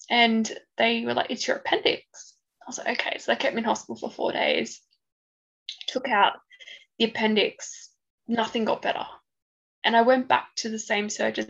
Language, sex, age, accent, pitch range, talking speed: English, female, 10-29, Australian, 215-255 Hz, 185 wpm